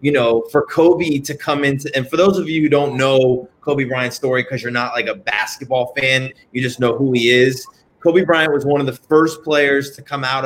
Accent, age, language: American, 30-49, English